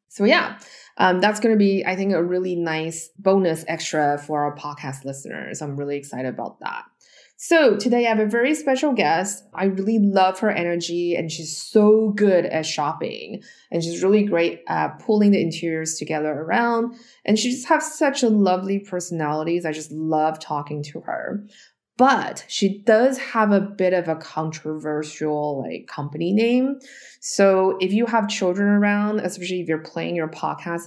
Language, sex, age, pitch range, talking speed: English, female, 20-39, 160-215 Hz, 175 wpm